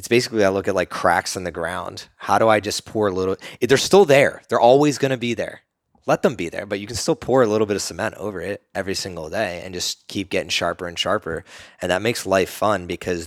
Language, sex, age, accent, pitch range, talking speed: English, male, 20-39, American, 85-105 Hz, 260 wpm